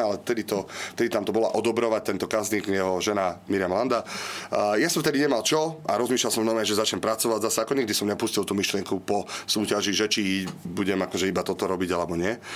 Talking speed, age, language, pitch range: 215 wpm, 30-49, Slovak, 95-120 Hz